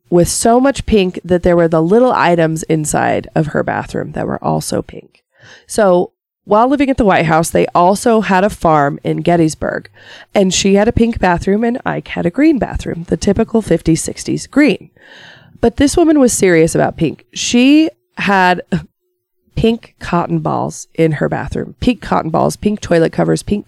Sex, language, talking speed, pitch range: female, English, 180 wpm, 165-225 Hz